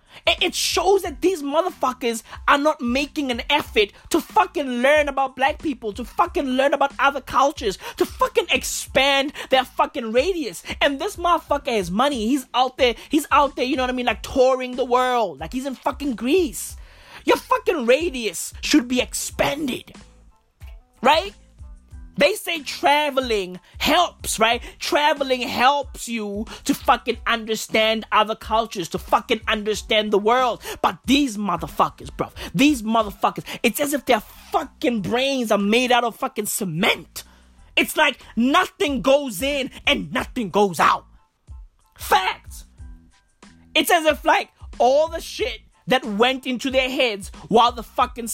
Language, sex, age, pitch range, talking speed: English, male, 20-39, 220-295 Hz, 150 wpm